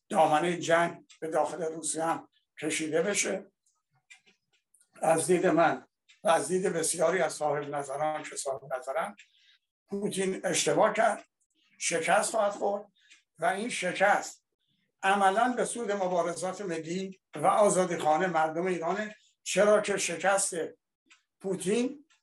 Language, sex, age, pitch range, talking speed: Persian, male, 60-79, 160-195 Hz, 120 wpm